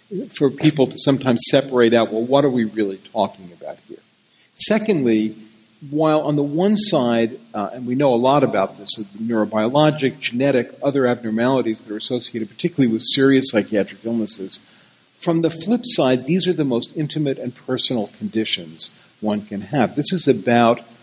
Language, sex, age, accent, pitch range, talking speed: English, male, 50-69, American, 115-145 Hz, 170 wpm